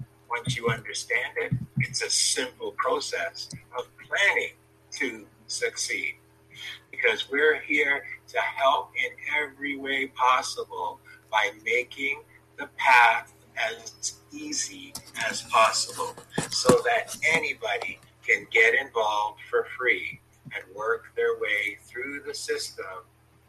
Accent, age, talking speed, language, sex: American, 50-69, 110 wpm, English, male